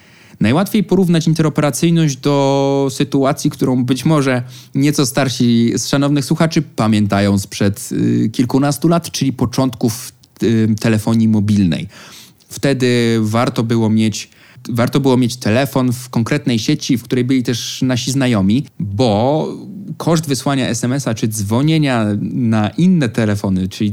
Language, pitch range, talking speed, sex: Polish, 120-145 Hz, 115 wpm, male